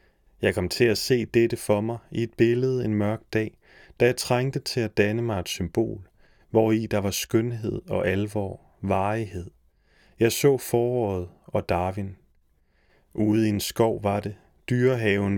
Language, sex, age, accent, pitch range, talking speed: Danish, male, 30-49, native, 100-120 Hz, 170 wpm